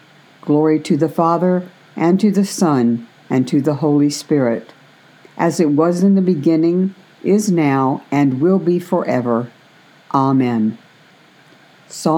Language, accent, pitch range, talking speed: English, American, 130-175 Hz, 135 wpm